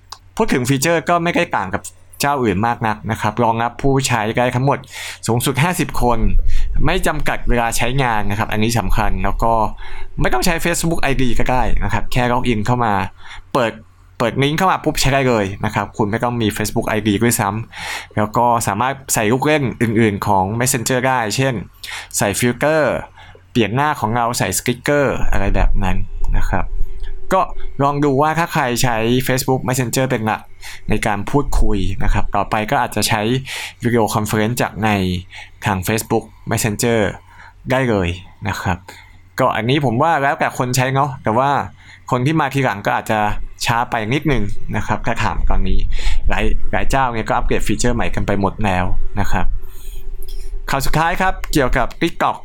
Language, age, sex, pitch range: English, 20-39, male, 100-130 Hz